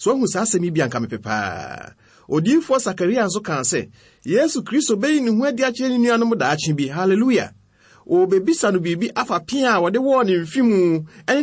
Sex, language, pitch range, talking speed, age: male, Hungarian, 130-215 Hz, 180 wpm, 30-49